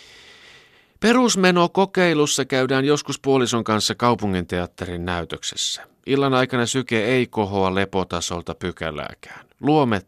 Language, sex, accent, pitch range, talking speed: Finnish, male, native, 90-135 Hz, 95 wpm